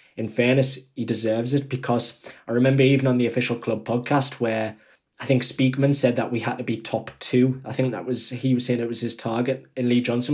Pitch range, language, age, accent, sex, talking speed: 115-130 Hz, English, 20-39, British, male, 230 wpm